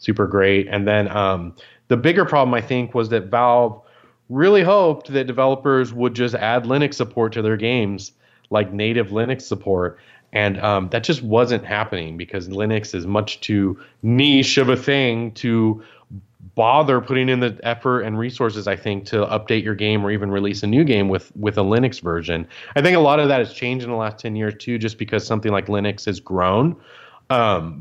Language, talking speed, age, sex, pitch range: English, 195 wpm, 30-49, male, 105-130 Hz